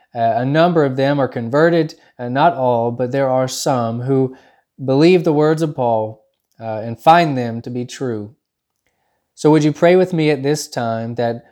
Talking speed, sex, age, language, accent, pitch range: 190 wpm, male, 20-39, English, American, 120-150 Hz